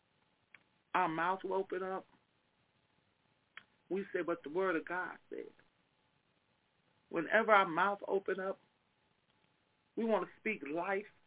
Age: 40-59